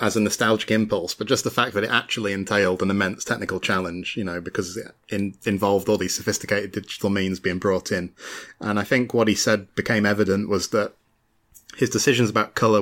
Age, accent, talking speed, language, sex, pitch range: 20-39, British, 200 wpm, English, male, 100-115 Hz